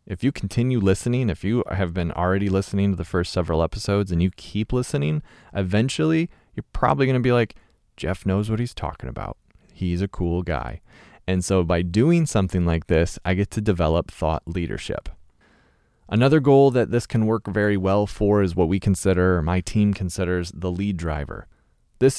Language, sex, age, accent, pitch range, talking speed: English, male, 30-49, American, 90-110 Hz, 190 wpm